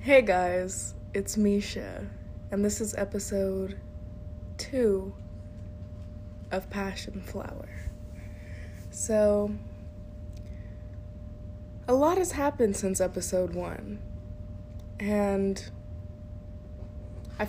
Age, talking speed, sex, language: 20-39, 75 wpm, female, English